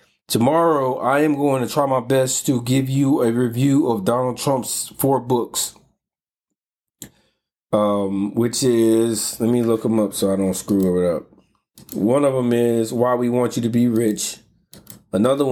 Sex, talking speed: male, 170 wpm